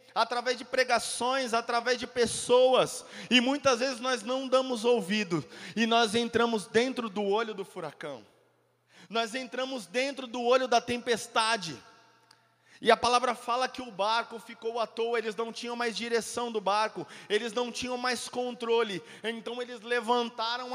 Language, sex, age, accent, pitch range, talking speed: Portuguese, male, 30-49, Brazilian, 230-255 Hz, 155 wpm